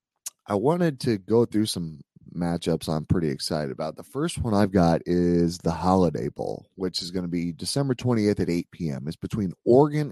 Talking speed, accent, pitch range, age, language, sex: 195 wpm, American, 90-130 Hz, 30-49, English, male